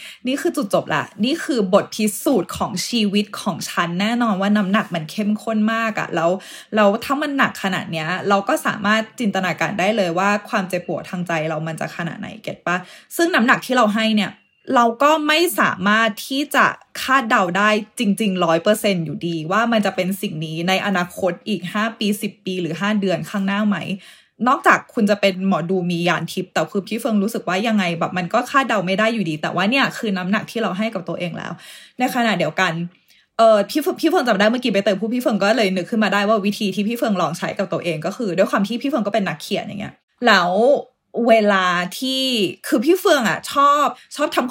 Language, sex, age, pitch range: Thai, female, 20-39, 190-240 Hz